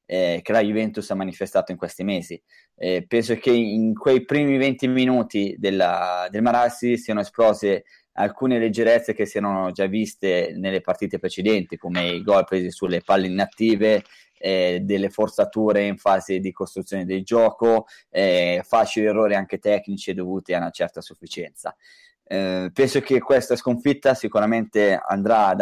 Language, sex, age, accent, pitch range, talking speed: Italian, male, 20-39, native, 95-115 Hz, 155 wpm